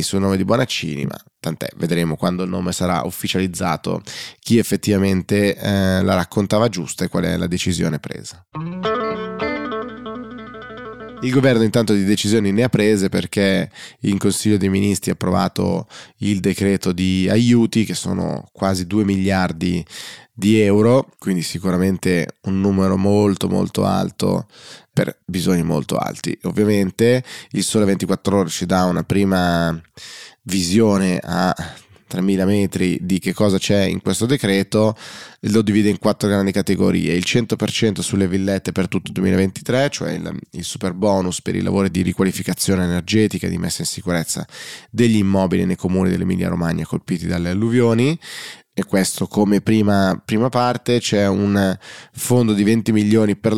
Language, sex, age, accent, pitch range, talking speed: Italian, male, 20-39, native, 95-110 Hz, 150 wpm